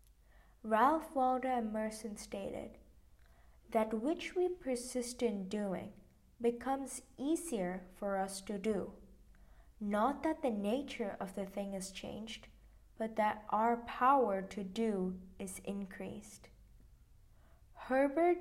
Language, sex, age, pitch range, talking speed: English, female, 20-39, 195-255 Hz, 110 wpm